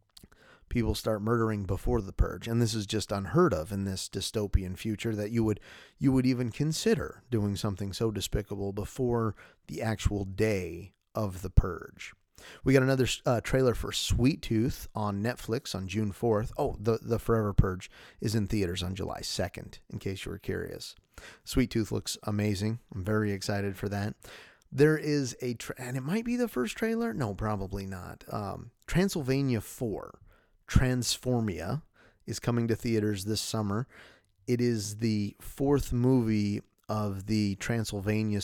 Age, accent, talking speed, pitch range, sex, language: 30-49, American, 160 wpm, 100-125 Hz, male, English